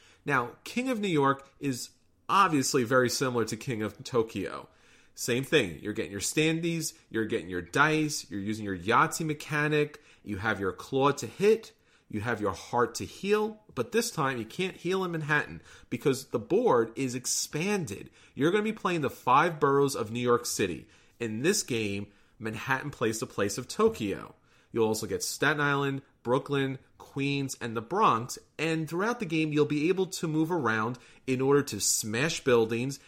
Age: 30-49